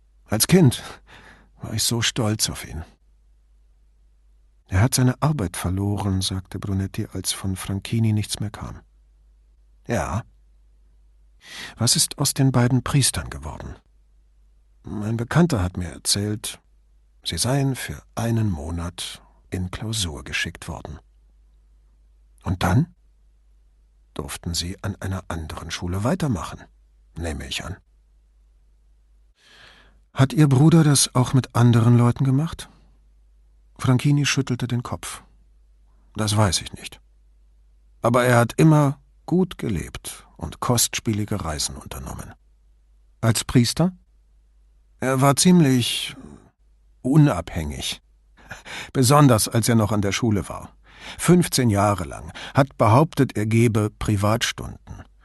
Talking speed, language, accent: 115 wpm, English, German